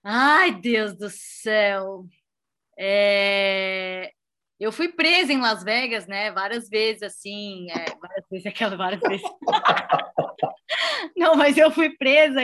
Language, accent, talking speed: Portuguese, Brazilian, 125 wpm